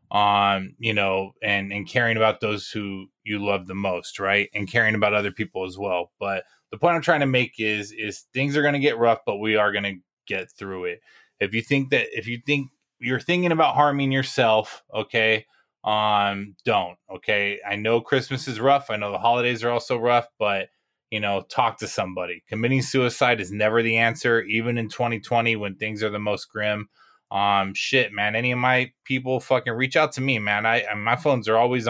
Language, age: English, 20-39